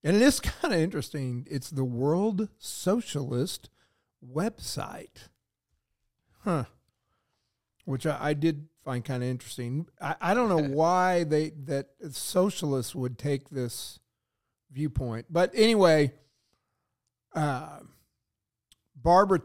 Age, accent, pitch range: 40-59, American, 125-170 Hz